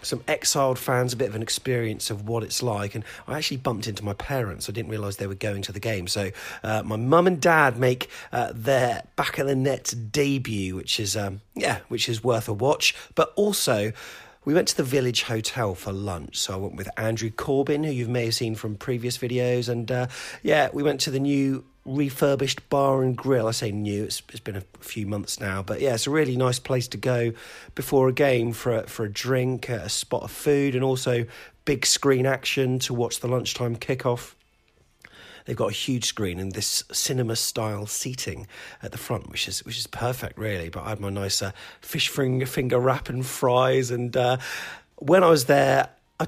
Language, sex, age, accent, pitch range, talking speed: English, male, 40-59, British, 110-135 Hz, 215 wpm